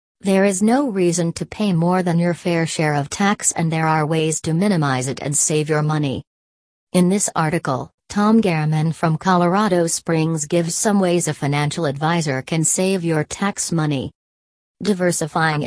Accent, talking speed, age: American, 170 wpm, 40-59